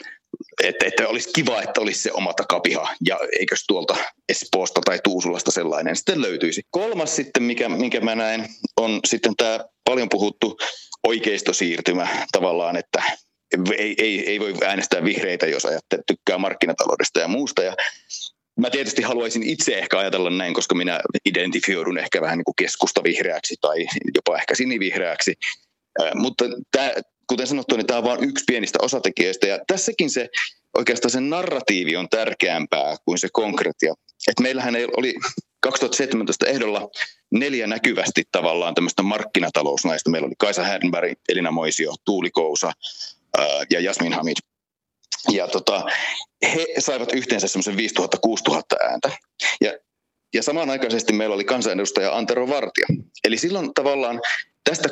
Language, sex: Finnish, male